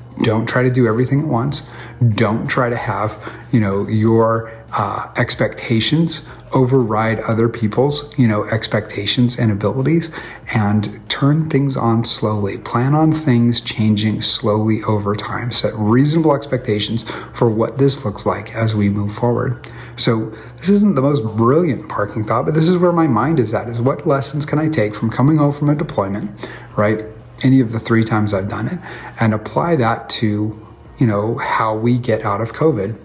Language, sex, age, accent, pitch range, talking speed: English, male, 30-49, American, 110-135 Hz, 175 wpm